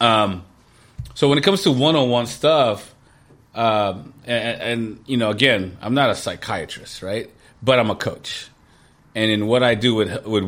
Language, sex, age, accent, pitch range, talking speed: English, male, 30-49, American, 100-125 Hz, 170 wpm